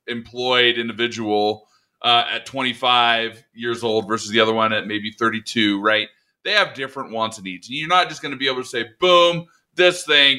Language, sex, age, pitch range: English, male, 20-39, 115-135 Hz